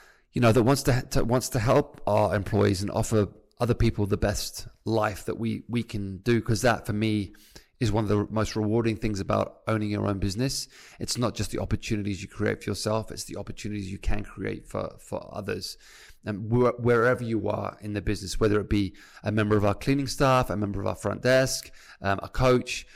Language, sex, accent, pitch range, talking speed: English, male, British, 100-115 Hz, 215 wpm